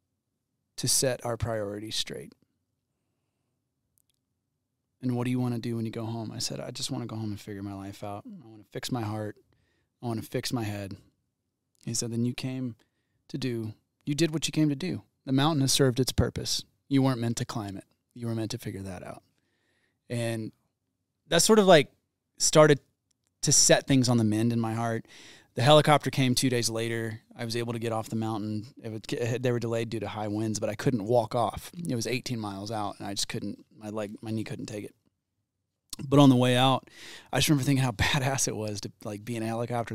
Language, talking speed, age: English, 230 wpm, 30-49